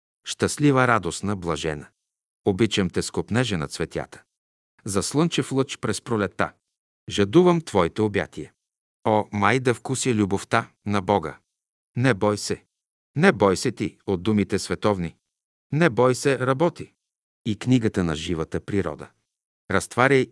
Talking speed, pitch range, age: 125 wpm, 95-125 Hz, 50-69